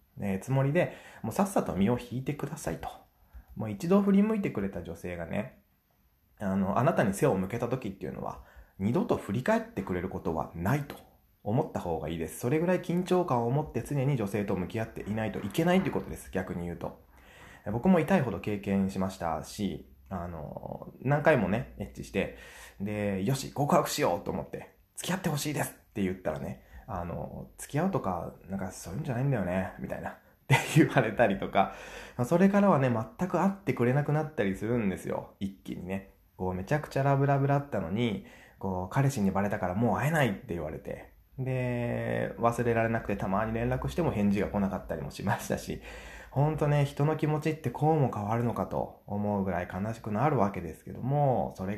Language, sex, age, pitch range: Japanese, male, 20-39, 95-140 Hz